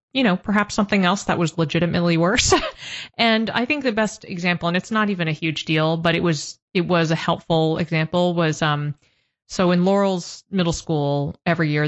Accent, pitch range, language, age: American, 155-185 Hz, English, 30-49